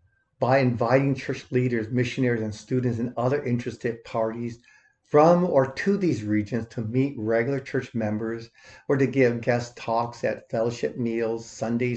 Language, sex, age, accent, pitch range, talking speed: English, male, 50-69, American, 110-130 Hz, 150 wpm